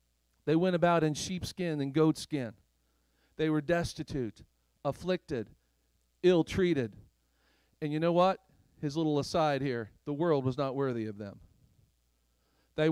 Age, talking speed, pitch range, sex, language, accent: 40-59, 130 wpm, 120-165 Hz, male, English, American